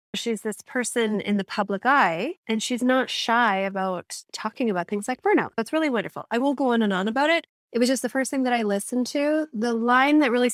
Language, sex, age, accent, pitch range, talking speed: English, female, 30-49, American, 205-255 Hz, 240 wpm